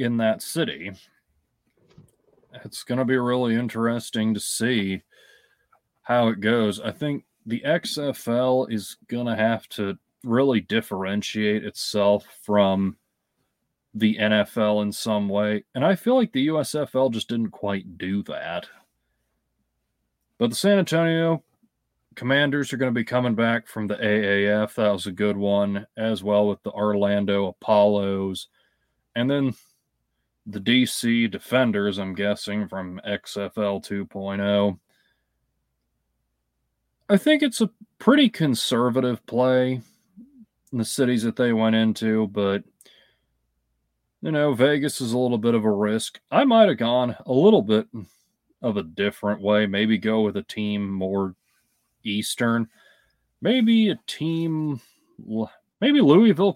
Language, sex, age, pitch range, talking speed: English, male, 30-49, 100-130 Hz, 135 wpm